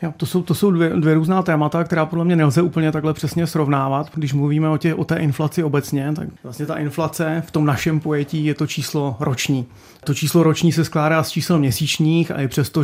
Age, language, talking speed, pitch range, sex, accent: 30-49, Czech, 220 wpm, 135-155 Hz, male, native